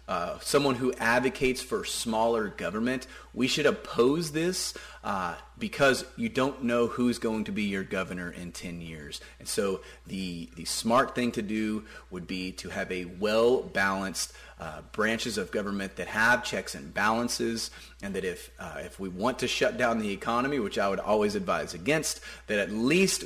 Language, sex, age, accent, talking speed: English, male, 30-49, American, 180 wpm